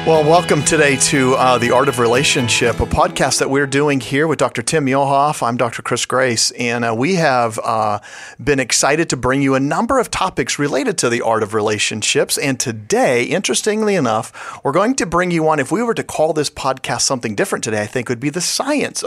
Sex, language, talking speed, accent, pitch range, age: male, English, 220 wpm, American, 120-180 Hz, 40-59